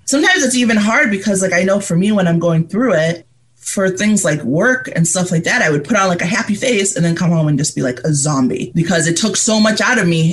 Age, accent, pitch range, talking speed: 30-49, American, 160-205 Hz, 285 wpm